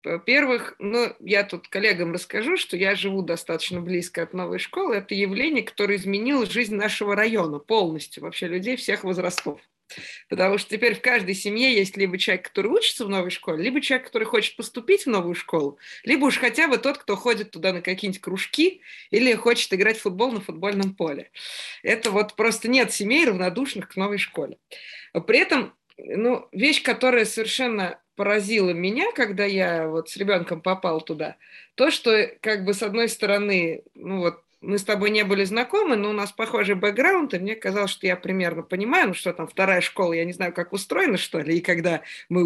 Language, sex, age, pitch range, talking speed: Russian, female, 20-39, 180-235 Hz, 185 wpm